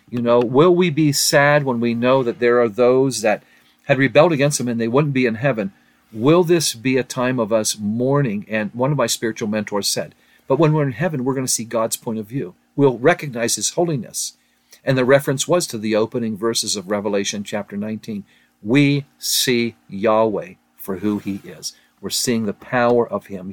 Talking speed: 205 wpm